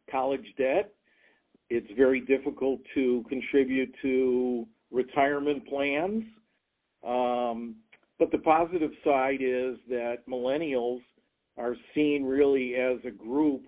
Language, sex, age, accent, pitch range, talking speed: English, male, 50-69, American, 120-145 Hz, 105 wpm